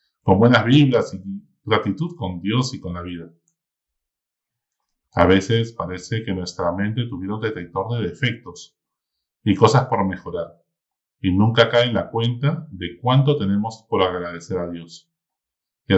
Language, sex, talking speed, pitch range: Spanish, male, 150 wpm, 95-125 Hz